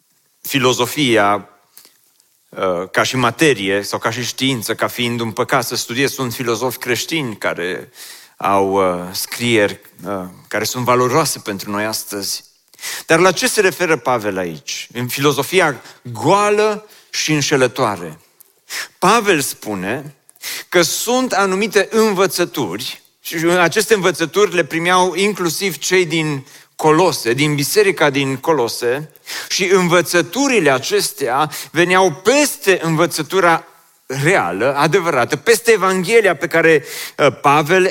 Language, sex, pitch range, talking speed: Romanian, male, 140-185 Hz, 110 wpm